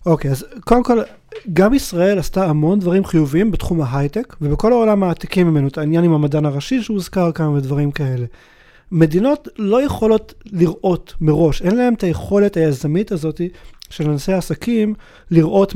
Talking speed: 155 wpm